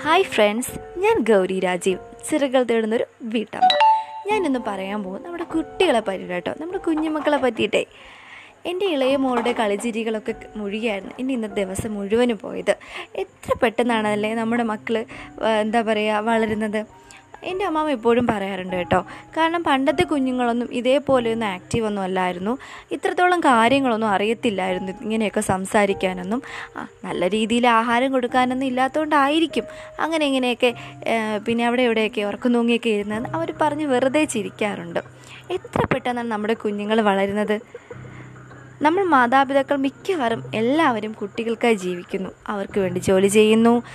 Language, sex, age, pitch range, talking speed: Malayalam, female, 20-39, 210-280 Hz, 110 wpm